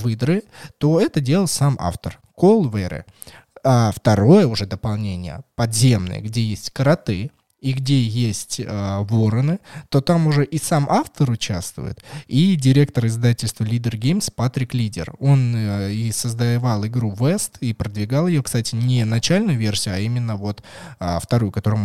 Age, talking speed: 20-39, 150 wpm